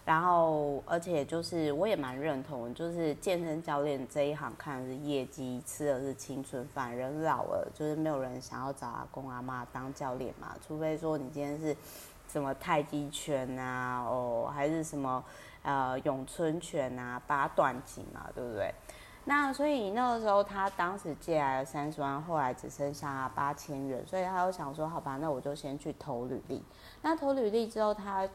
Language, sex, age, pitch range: Chinese, female, 30-49, 135-165 Hz